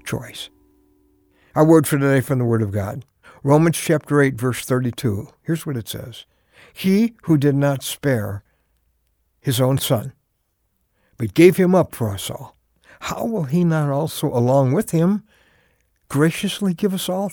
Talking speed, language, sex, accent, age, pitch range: 160 wpm, English, male, American, 60-79, 115-170 Hz